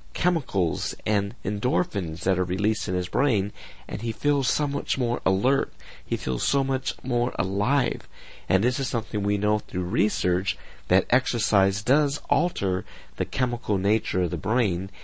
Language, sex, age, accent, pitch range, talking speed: English, male, 50-69, American, 90-120 Hz, 160 wpm